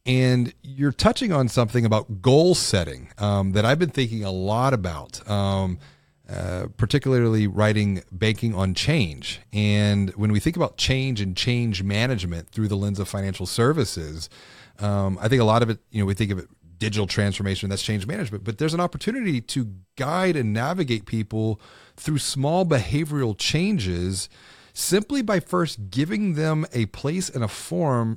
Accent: American